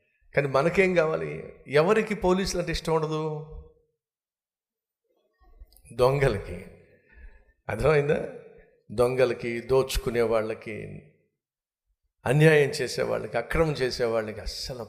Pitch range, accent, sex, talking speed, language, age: 120-175 Hz, native, male, 75 wpm, Telugu, 50-69